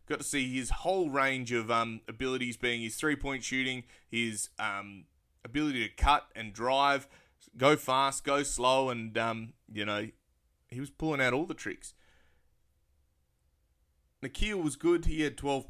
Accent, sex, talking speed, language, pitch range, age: Australian, male, 155 wpm, English, 110-135 Hz, 20-39